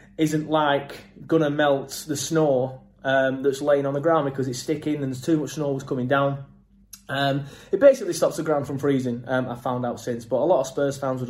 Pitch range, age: 135-180 Hz, 20-39